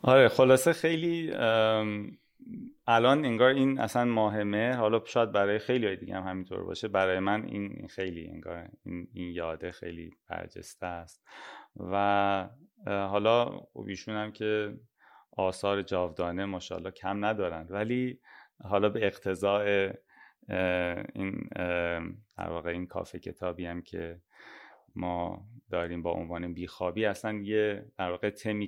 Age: 30-49